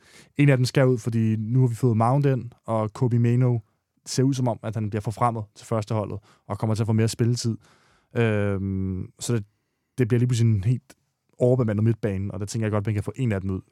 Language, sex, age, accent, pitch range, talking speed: Danish, male, 20-39, native, 110-130 Hz, 240 wpm